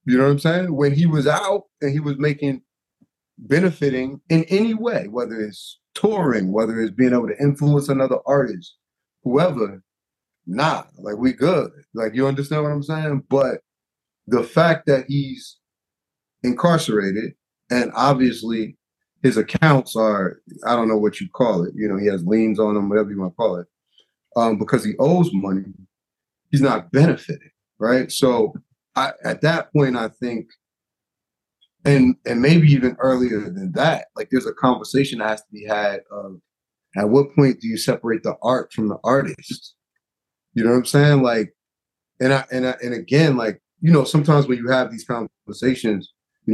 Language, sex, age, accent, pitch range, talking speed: English, male, 30-49, American, 110-150 Hz, 175 wpm